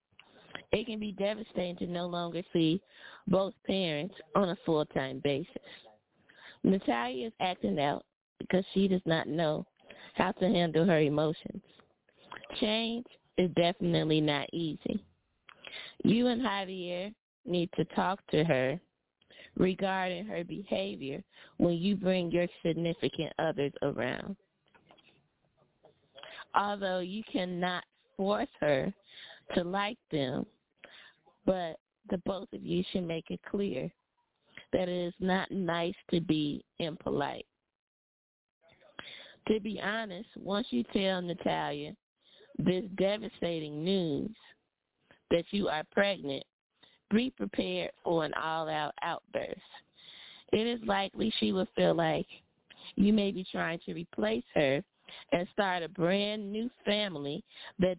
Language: English